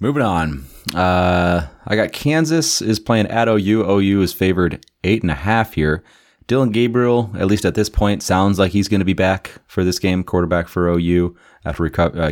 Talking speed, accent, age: 190 wpm, American, 30-49